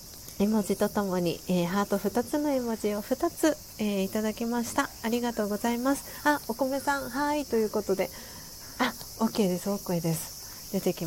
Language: Japanese